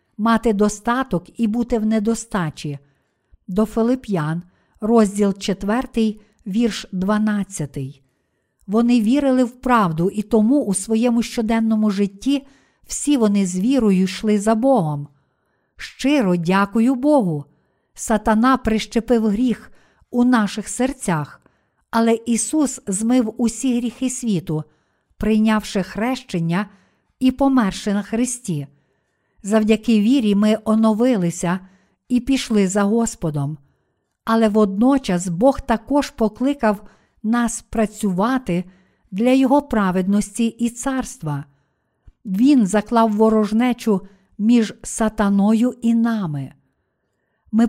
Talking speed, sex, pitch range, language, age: 100 wpm, female, 190-240 Hz, Ukrainian, 50-69